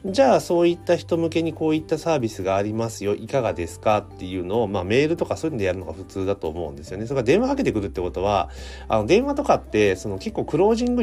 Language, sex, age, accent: Japanese, male, 30-49, native